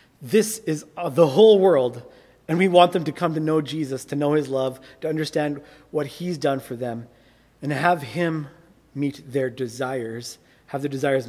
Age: 30-49